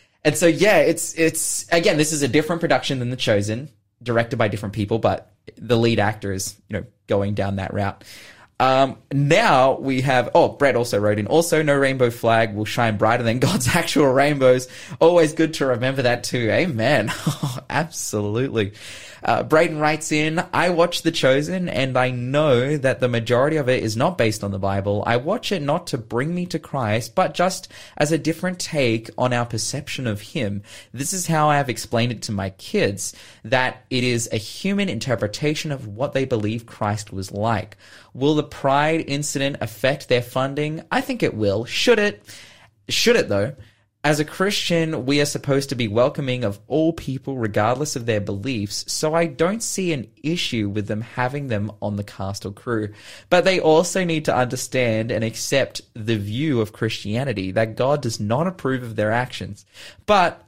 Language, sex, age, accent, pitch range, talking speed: English, male, 20-39, Australian, 110-150 Hz, 190 wpm